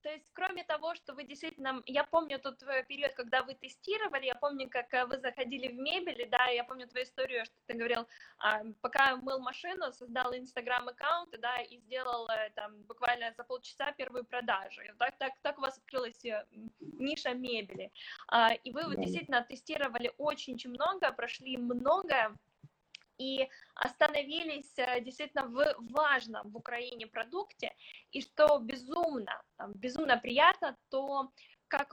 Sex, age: female, 20-39